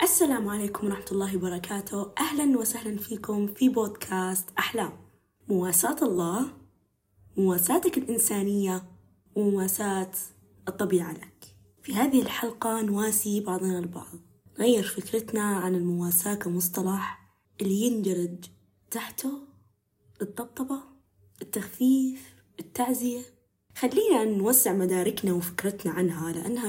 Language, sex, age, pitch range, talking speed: Arabic, female, 20-39, 185-245 Hz, 90 wpm